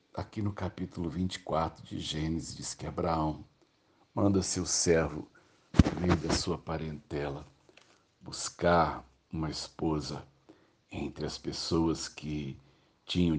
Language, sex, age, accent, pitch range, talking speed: Portuguese, male, 60-79, Brazilian, 80-95 Hz, 110 wpm